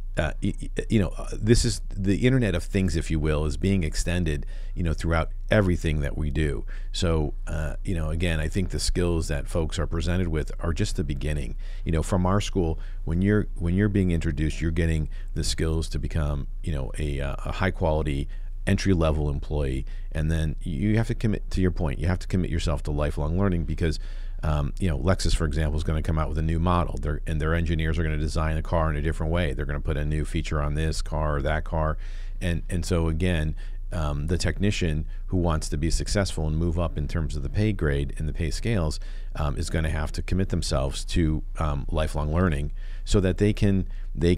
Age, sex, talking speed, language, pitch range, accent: 50-69, male, 225 wpm, English, 75-90 Hz, American